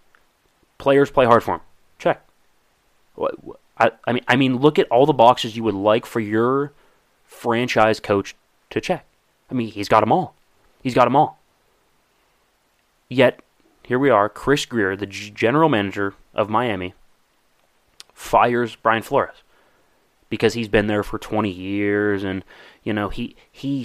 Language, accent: English, American